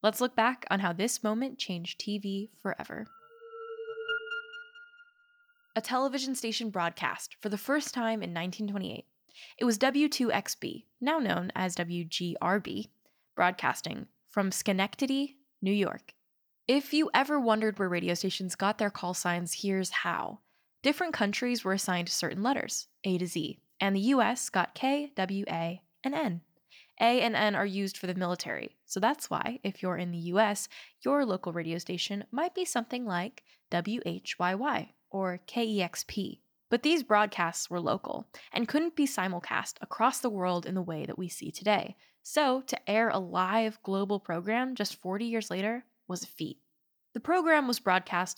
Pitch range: 185-260 Hz